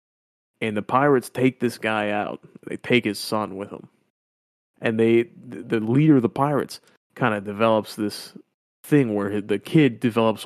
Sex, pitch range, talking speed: male, 105-135 Hz, 165 wpm